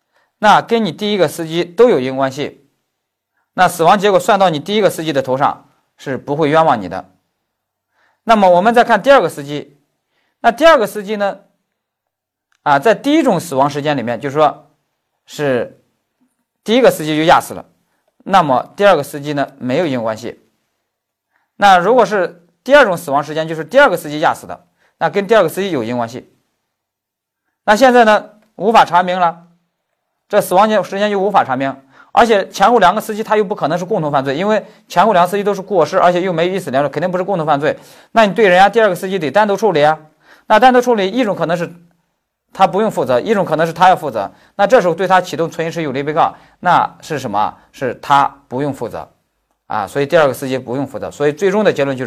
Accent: native